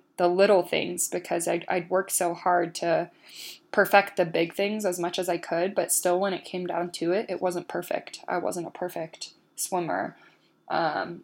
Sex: female